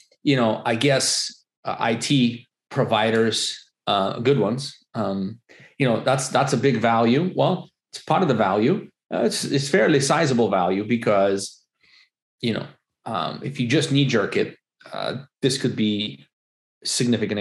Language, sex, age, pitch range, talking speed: English, male, 30-49, 115-145 Hz, 160 wpm